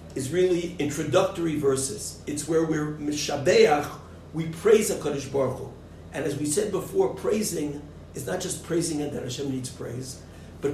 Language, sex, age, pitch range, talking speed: English, male, 50-69, 140-195 Hz, 160 wpm